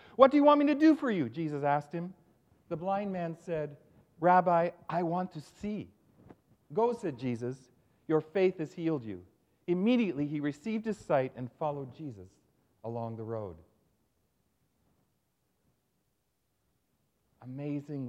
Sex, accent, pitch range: male, American, 140-235 Hz